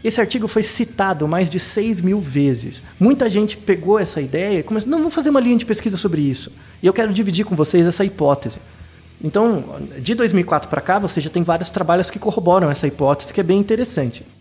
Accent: Brazilian